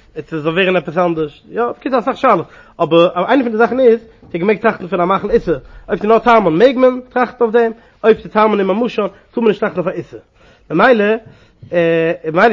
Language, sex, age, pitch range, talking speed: English, male, 30-49, 165-220 Hz, 170 wpm